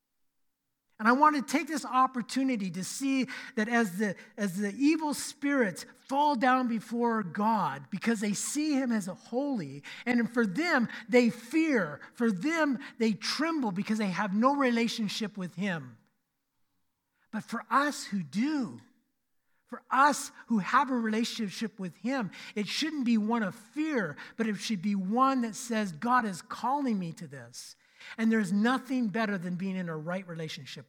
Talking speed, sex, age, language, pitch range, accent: 165 wpm, male, 50-69, English, 190-255 Hz, American